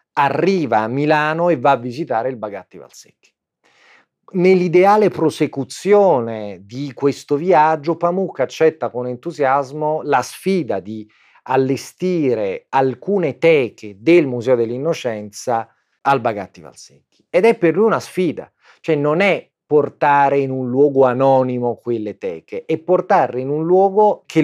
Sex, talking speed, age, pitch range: male, 130 wpm, 40-59, 130-175 Hz